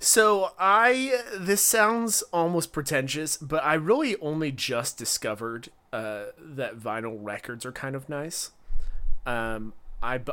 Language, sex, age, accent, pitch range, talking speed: English, male, 30-49, American, 110-145 Hz, 130 wpm